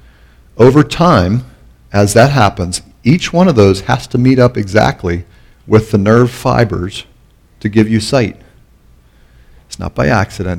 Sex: male